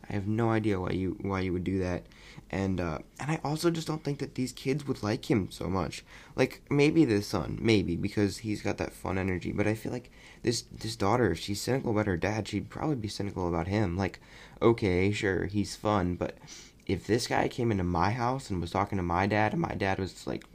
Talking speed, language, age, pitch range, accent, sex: 235 wpm, English, 20-39, 100-150 Hz, American, male